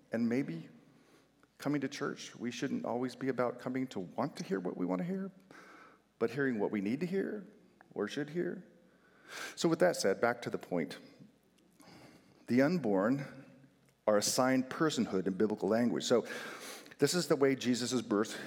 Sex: male